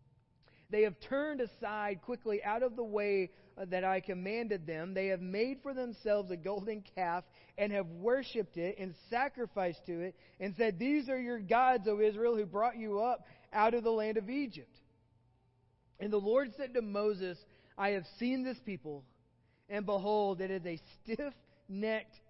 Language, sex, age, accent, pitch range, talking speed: English, male, 30-49, American, 160-210 Hz, 170 wpm